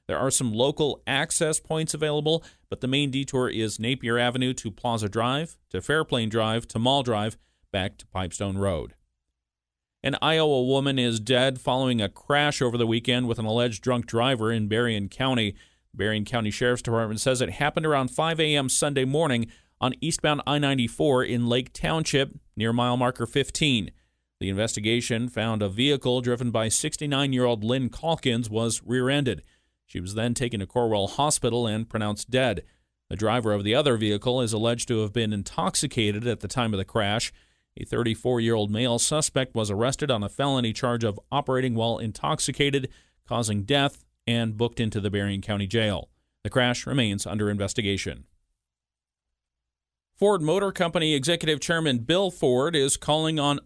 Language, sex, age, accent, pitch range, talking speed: English, male, 40-59, American, 105-140 Hz, 165 wpm